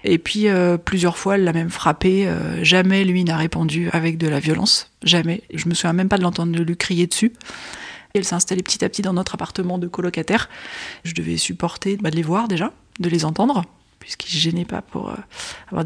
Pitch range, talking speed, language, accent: 175-200 Hz, 225 wpm, French, French